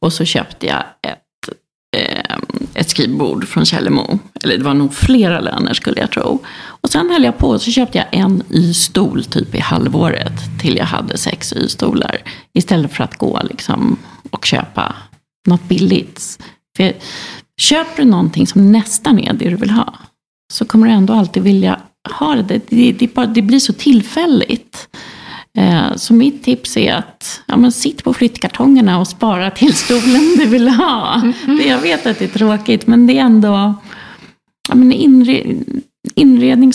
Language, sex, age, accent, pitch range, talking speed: English, female, 40-59, Swedish, 190-255 Hz, 170 wpm